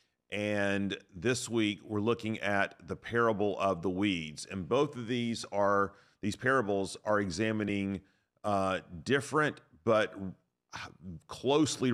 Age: 40-59